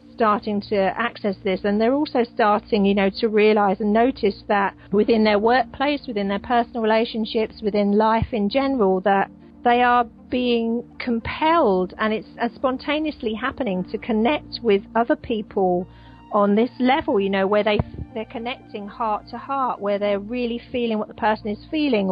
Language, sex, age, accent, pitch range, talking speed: English, female, 40-59, British, 205-245 Hz, 170 wpm